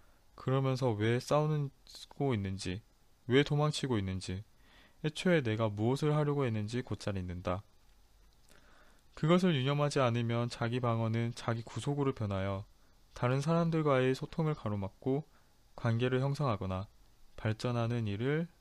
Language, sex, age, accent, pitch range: Korean, male, 20-39, native, 105-140 Hz